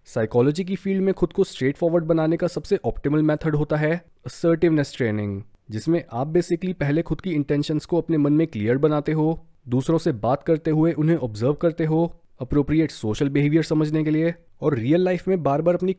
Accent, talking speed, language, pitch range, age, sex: native, 195 wpm, Hindi, 130-170 Hz, 20-39, male